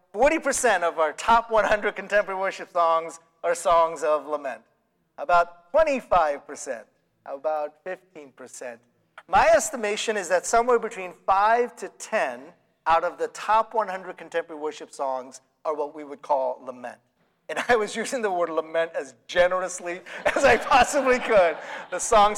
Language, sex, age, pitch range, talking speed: English, male, 40-59, 170-235 Hz, 140 wpm